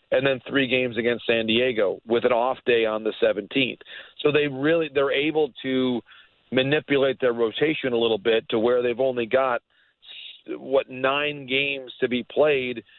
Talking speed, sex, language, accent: 180 wpm, male, English, American